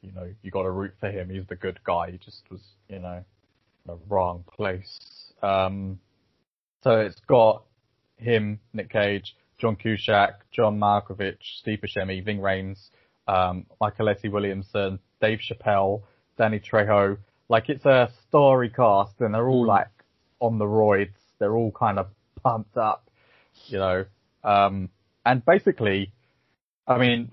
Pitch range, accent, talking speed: 95-115 Hz, British, 150 wpm